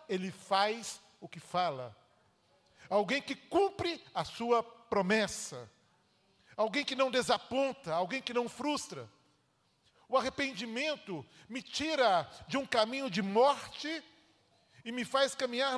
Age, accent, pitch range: 40-59, Brazilian, 180-255 Hz